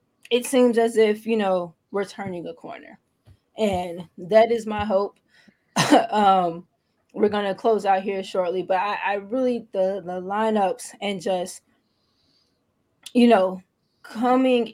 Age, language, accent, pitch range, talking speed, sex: 20-39, English, American, 195-230 Hz, 145 wpm, female